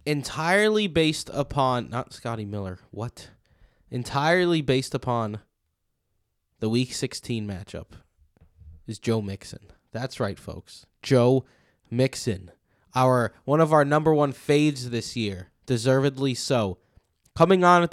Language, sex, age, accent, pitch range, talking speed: English, male, 20-39, American, 105-130 Hz, 120 wpm